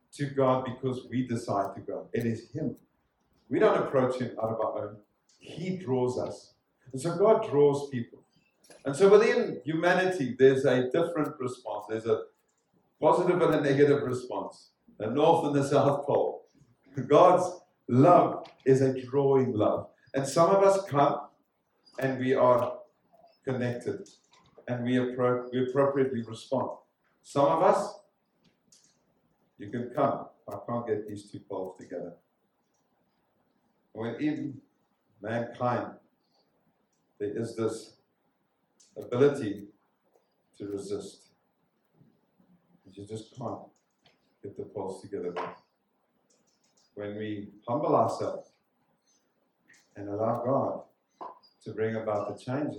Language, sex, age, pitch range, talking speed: English, male, 50-69, 110-145 Hz, 120 wpm